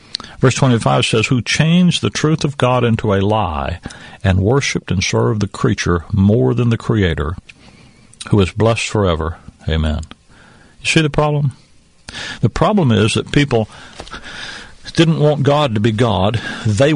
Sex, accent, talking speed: male, American, 150 wpm